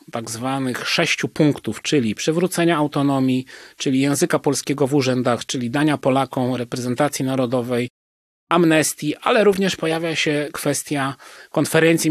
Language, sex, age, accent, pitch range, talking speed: Polish, male, 30-49, native, 120-150 Hz, 120 wpm